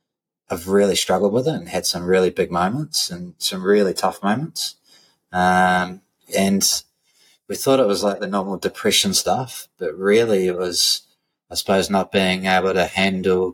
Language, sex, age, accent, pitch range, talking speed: English, male, 20-39, Australian, 90-100 Hz, 170 wpm